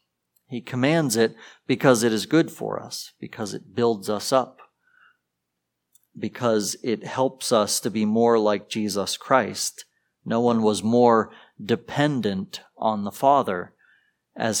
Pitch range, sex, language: 105-145 Hz, male, English